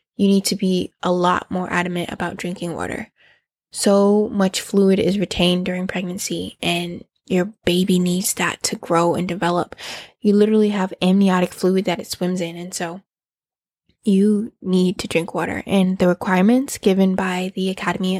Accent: American